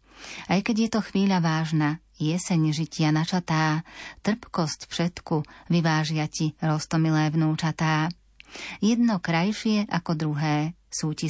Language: Slovak